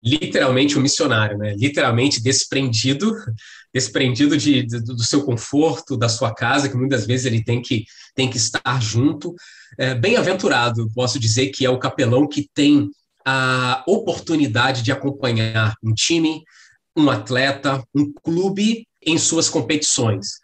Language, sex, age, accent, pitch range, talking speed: Portuguese, male, 20-39, Brazilian, 120-145 Hz, 130 wpm